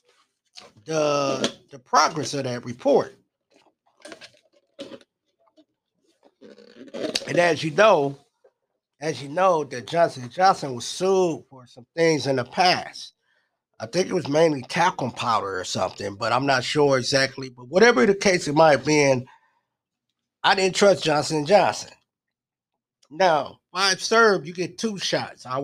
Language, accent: English, American